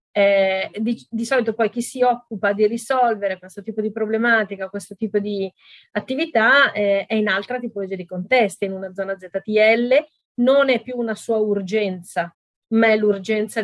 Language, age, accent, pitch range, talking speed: Italian, 40-59, native, 195-235 Hz, 165 wpm